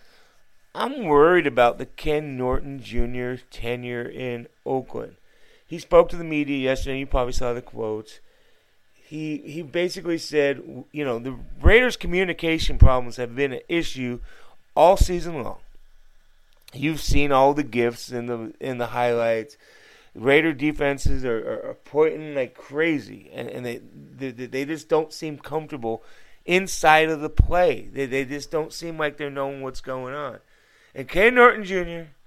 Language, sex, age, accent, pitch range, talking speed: English, male, 30-49, American, 130-165 Hz, 155 wpm